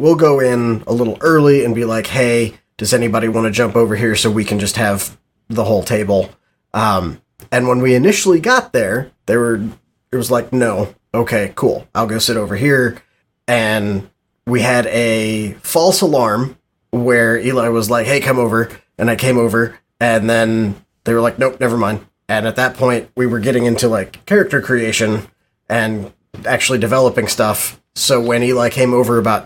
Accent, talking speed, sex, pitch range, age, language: American, 185 wpm, male, 110-125 Hz, 30-49, English